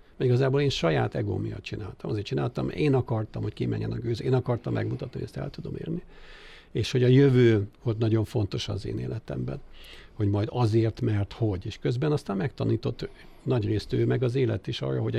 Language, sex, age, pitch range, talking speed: English, male, 60-79, 105-125 Hz, 200 wpm